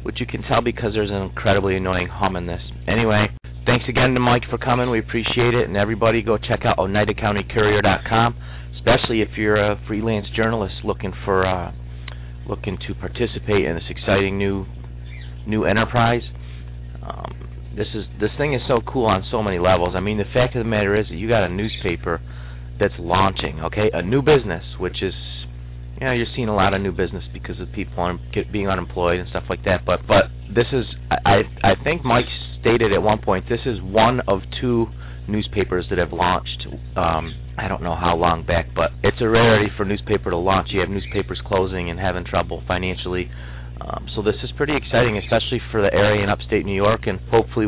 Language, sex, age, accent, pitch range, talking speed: English, male, 30-49, American, 80-110 Hz, 205 wpm